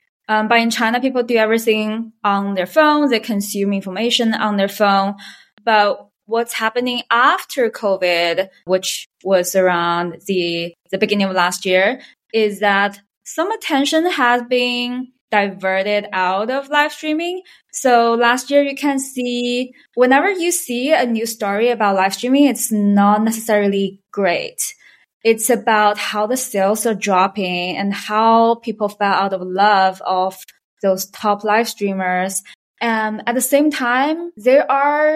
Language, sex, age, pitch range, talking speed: English, female, 20-39, 195-245 Hz, 145 wpm